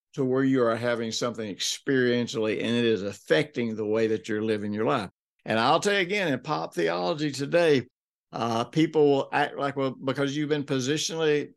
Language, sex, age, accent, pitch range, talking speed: English, male, 60-79, American, 115-150 Hz, 190 wpm